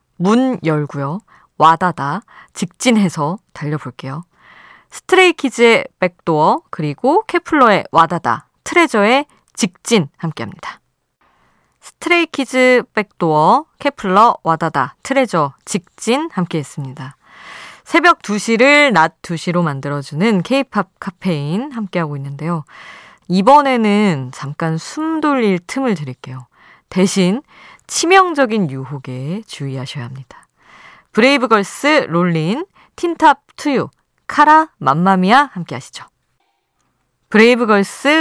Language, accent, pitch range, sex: Korean, native, 150-255 Hz, female